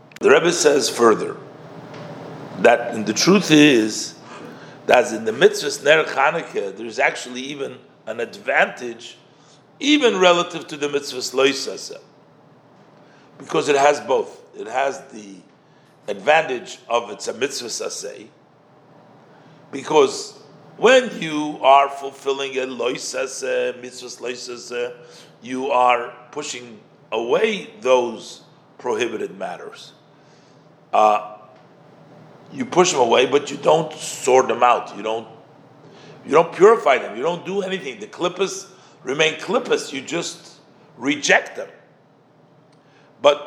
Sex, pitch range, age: male, 135-195 Hz, 50-69